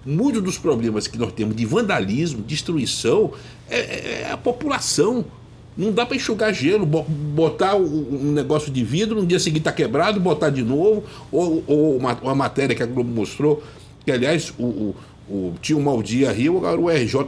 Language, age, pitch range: Portuguese, 60-79, 120-185 Hz